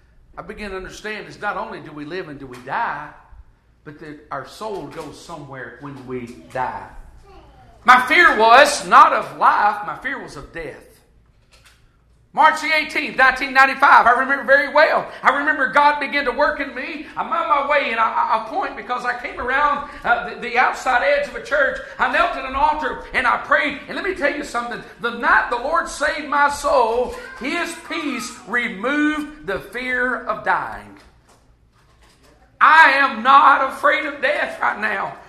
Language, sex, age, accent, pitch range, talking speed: English, male, 50-69, American, 240-300 Hz, 180 wpm